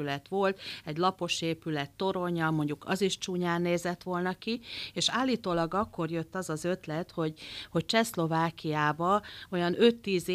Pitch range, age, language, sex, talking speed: 155-190 Hz, 40-59, Hungarian, female, 140 wpm